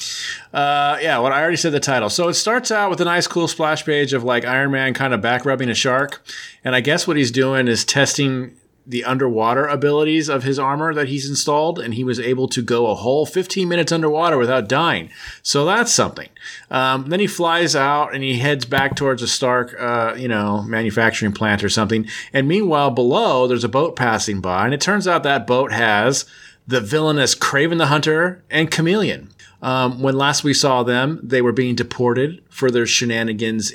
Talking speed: 205 wpm